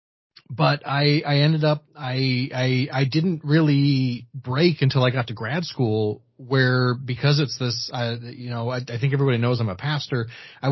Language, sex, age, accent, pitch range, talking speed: English, male, 30-49, American, 115-140 Hz, 185 wpm